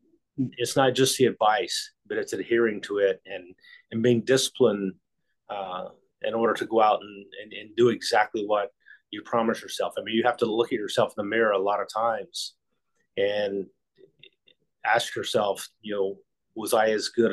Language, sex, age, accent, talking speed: English, male, 30-49, American, 185 wpm